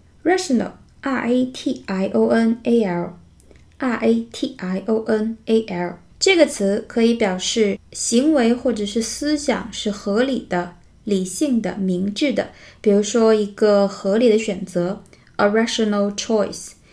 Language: Chinese